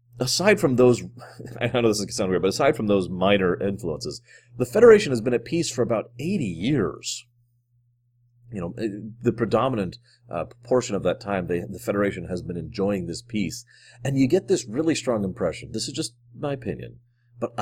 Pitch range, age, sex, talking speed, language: 105-125 Hz, 30-49, male, 190 wpm, English